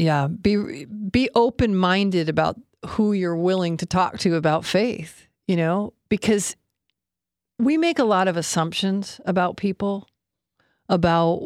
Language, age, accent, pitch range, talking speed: English, 40-59, American, 165-200 Hz, 130 wpm